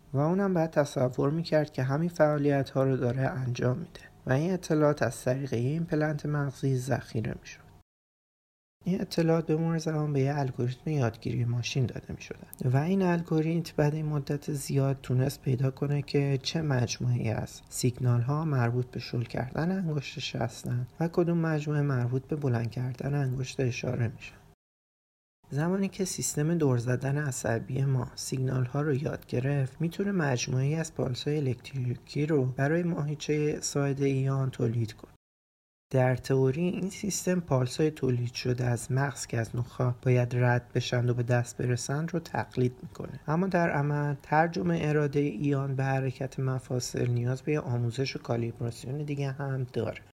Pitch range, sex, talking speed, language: 125-150 Hz, male, 150 wpm, Persian